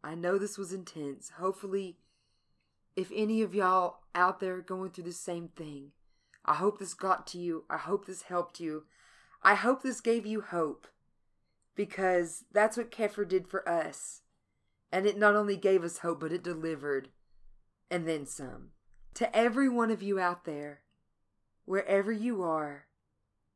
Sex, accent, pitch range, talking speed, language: female, American, 175-225 Hz, 165 wpm, English